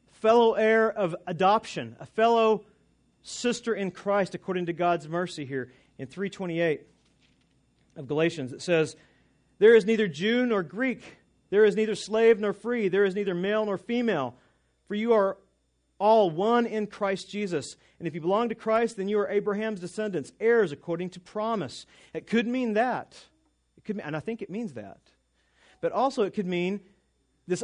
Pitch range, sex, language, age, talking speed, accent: 170-215 Hz, male, English, 40-59, 170 wpm, American